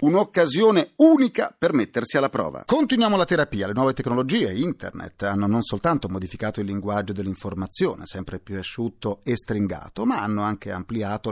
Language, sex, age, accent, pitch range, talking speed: Italian, male, 40-59, native, 100-135 Hz, 155 wpm